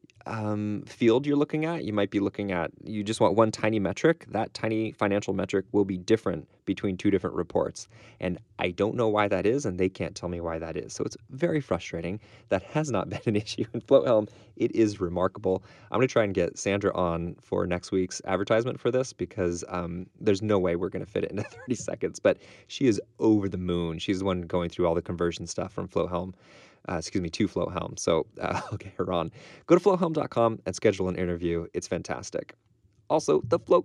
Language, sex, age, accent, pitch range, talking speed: English, male, 20-39, American, 95-120 Hz, 220 wpm